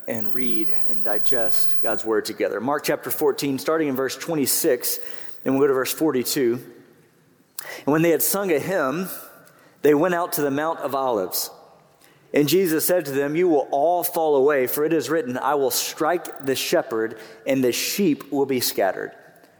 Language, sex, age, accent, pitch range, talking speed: English, male, 40-59, American, 135-175 Hz, 185 wpm